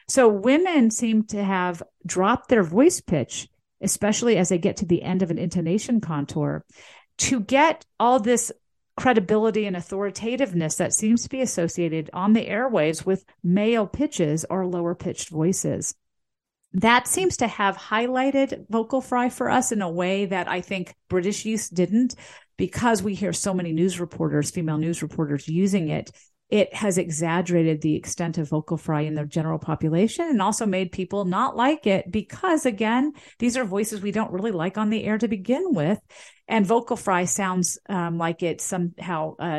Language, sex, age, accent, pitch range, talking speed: English, female, 40-59, American, 175-230 Hz, 175 wpm